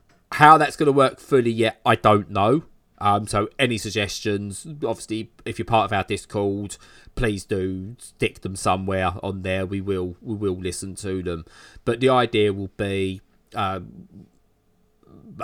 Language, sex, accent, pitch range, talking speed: English, male, British, 95-110 Hz, 160 wpm